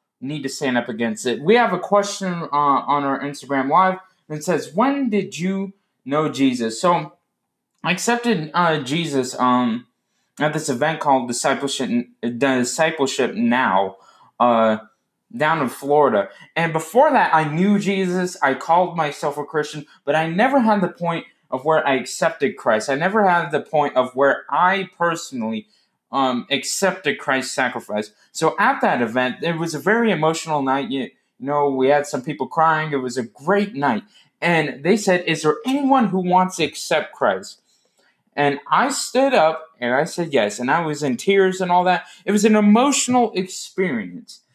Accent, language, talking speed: American, English, 170 wpm